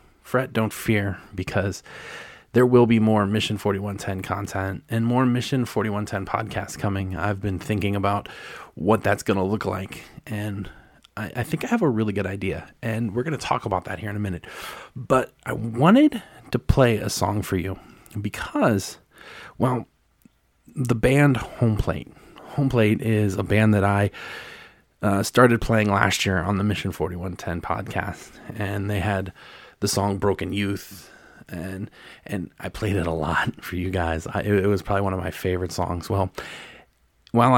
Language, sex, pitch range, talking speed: English, male, 95-115 Hz, 170 wpm